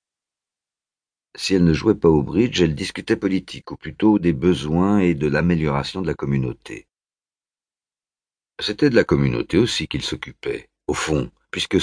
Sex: male